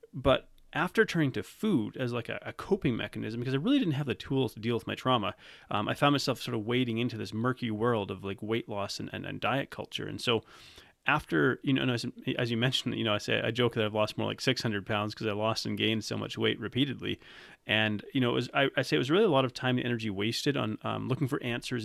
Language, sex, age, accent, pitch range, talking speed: English, male, 30-49, American, 110-135 Hz, 270 wpm